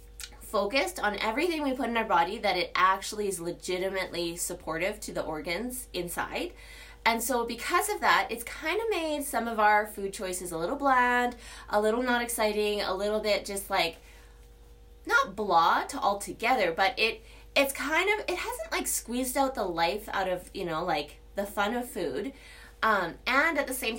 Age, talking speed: 20-39, 185 wpm